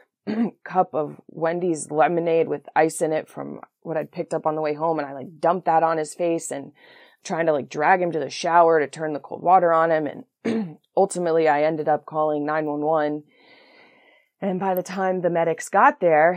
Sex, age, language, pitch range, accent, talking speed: female, 20-39, English, 155-190 Hz, American, 215 wpm